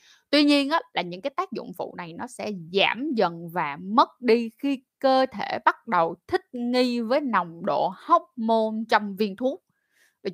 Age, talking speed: 20-39, 190 wpm